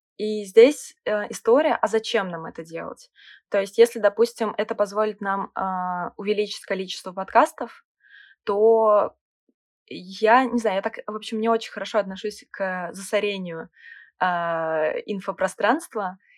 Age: 20-39